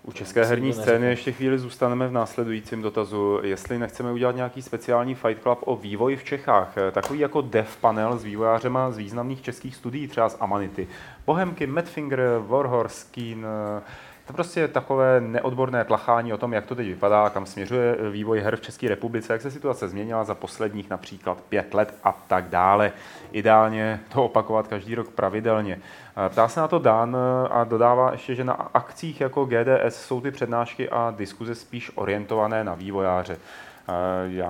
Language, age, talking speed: Czech, 30-49, 165 wpm